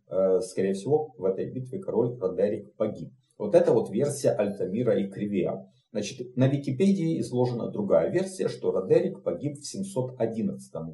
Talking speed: 145 wpm